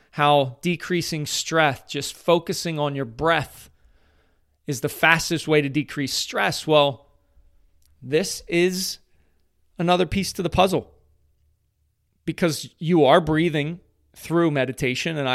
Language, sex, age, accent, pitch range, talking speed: English, male, 30-49, American, 105-155 Hz, 115 wpm